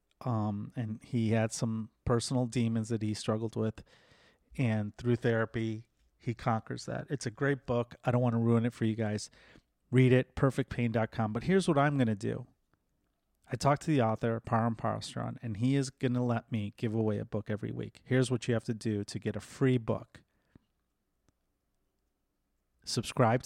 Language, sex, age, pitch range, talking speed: English, male, 30-49, 110-130 Hz, 185 wpm